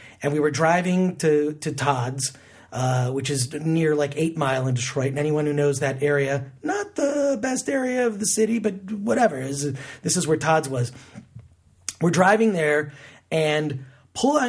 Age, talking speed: 30-49, 175 wpm